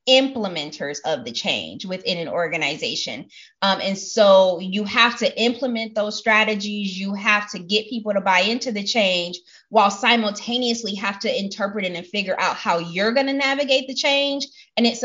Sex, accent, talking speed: female, American, 175 wpm